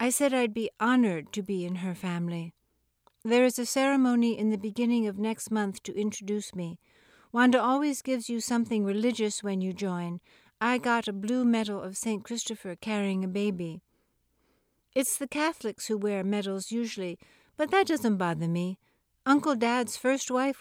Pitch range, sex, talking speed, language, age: 200-245 Hz, female, 170 wpm, English, 60-79